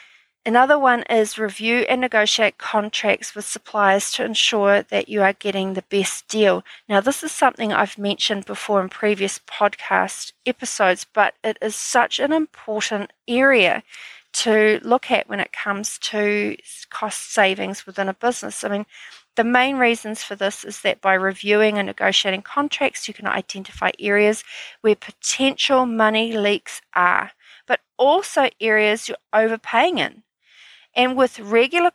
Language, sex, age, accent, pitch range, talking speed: English, female, 40-59, Australian, 205-250 Hz, 150 wpm